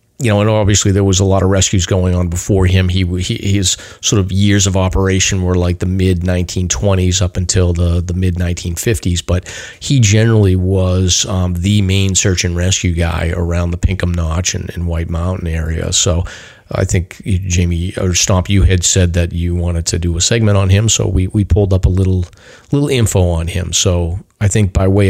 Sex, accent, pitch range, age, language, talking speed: male, American, 90-105 Hz, 40-59, English, 215 wpm